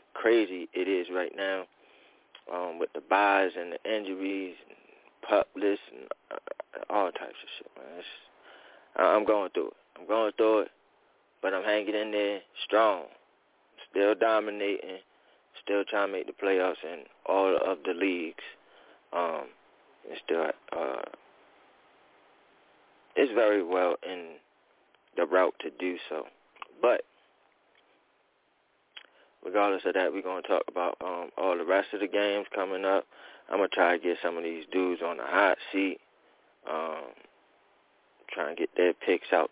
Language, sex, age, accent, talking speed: English, male, 30-49, American, 150 wpm